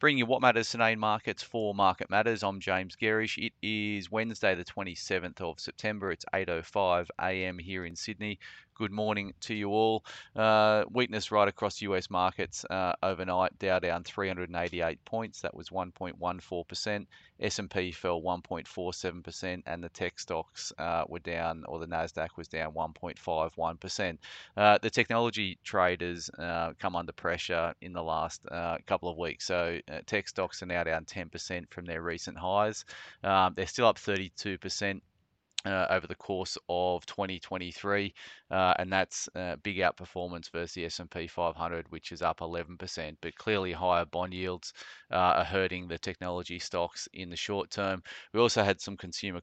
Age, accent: 30-49, Australian